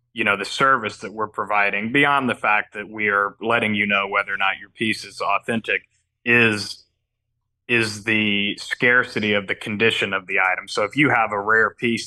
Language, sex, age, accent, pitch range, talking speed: English, male, 30-49, American, 100-115 Hz, 200 wpm